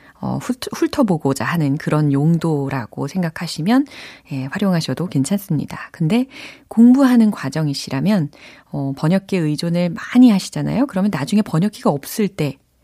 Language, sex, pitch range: Korean, female, 150-245 Hz